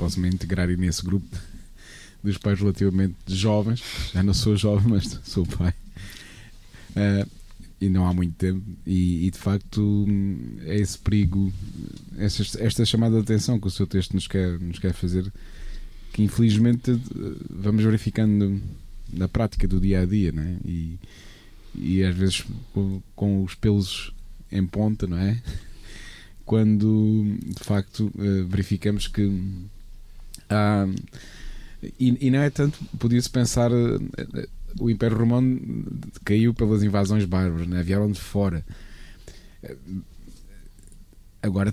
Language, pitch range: Portuguese, 95-110 Hz